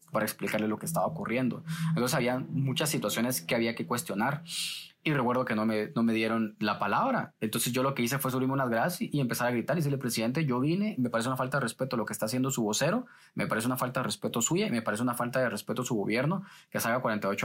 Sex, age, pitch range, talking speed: male, 20-39, 115-155 Hz, 255 wpm